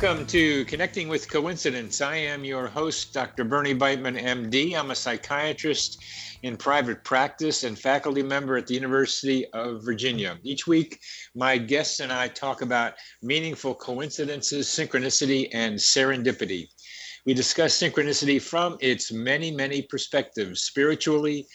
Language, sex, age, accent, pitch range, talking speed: English, male, 50-69, American, 120-145 Hz, 135 wpm